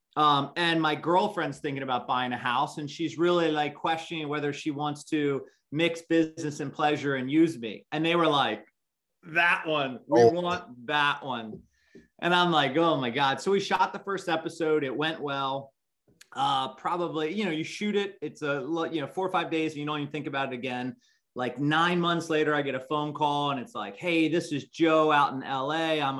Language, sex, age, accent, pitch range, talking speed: English, male, 30-49, American, 145-175 Hz, 215 wpm